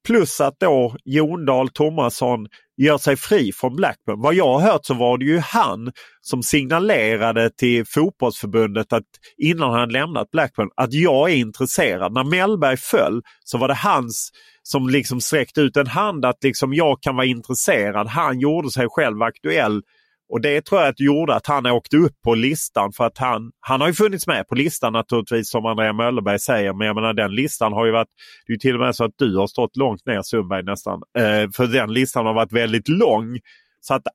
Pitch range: 115-145 Hz